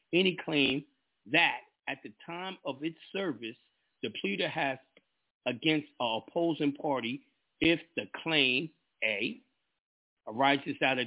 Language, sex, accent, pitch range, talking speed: English, male, American, 135-160 Hz, 125 wpm